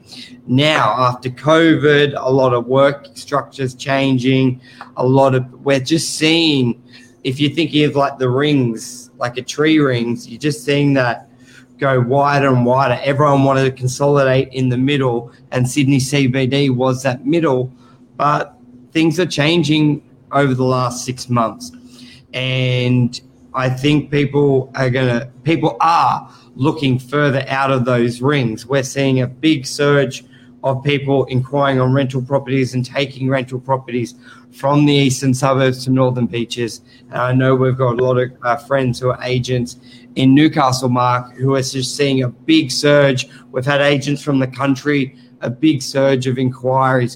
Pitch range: 125-140 Hz